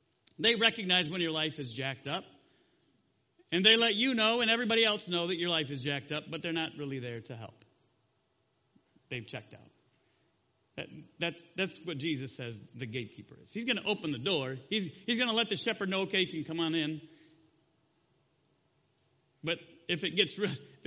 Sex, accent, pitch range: male, American, 130-165 Hz